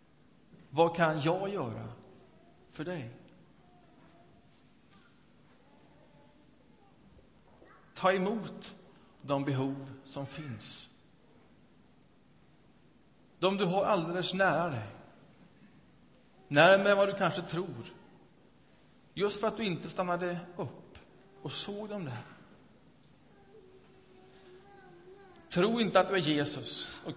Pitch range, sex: 145-200 Hz, male